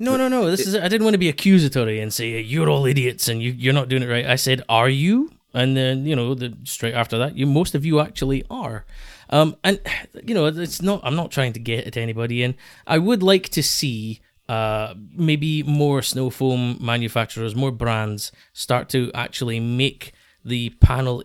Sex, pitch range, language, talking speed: male, 115-145 Hz, English, 210 wpm